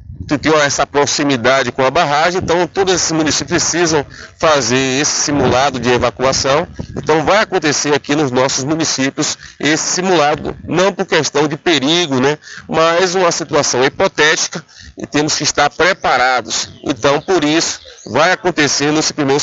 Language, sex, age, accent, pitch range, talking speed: Portuguese, male, 40-59, Brazilian, 130-160 Hz, 150 wpm